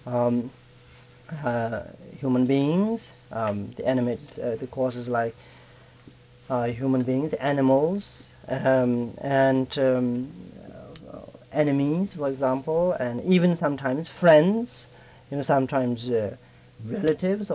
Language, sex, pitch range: Italian, male, 125-155 Hz